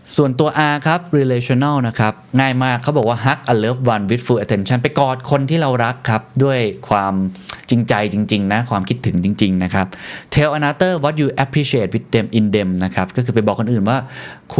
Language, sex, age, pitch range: Thai, male, 20-39, 105-140 Hz